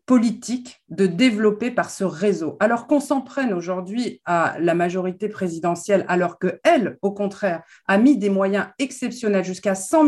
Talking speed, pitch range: 155 wpm, 185-235 Hz